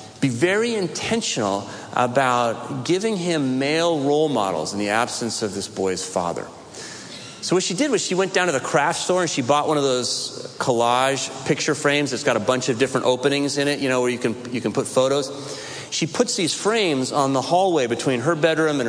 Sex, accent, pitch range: male, American, 130-190 Hz